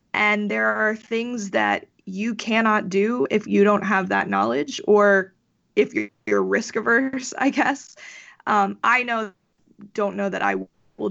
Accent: American